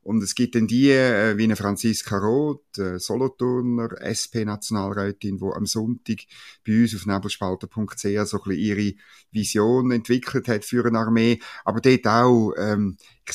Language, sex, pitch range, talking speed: German, male, 105-120 Hz, 150 wpm